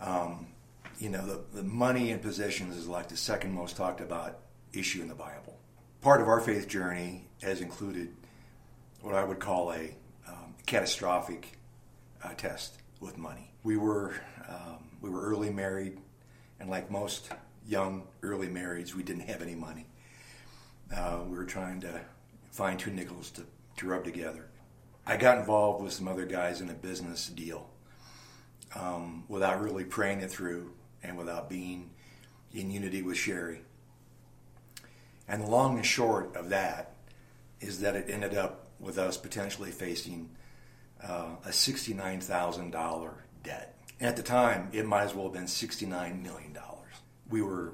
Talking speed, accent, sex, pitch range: 160 wpm, American, male, 90-120 Hz